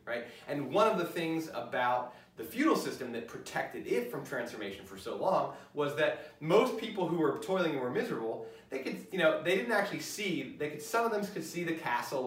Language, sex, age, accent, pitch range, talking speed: English, male, 30-49, American, 125-170 Hz, 220 wpm